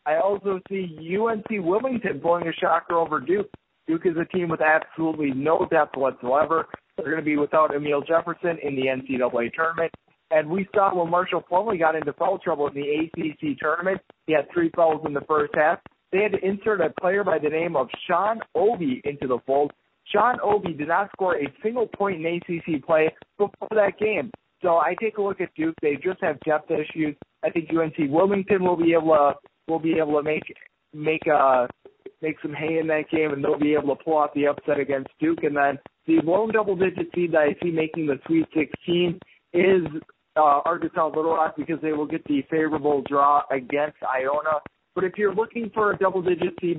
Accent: American